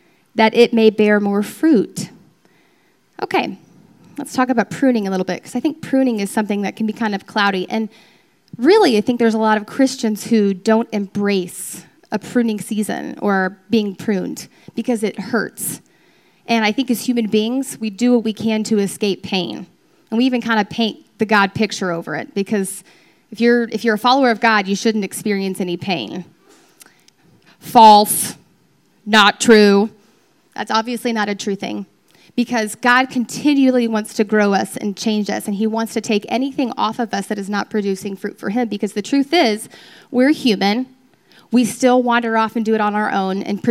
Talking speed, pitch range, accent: 190 wpm, 205-245 Hz, American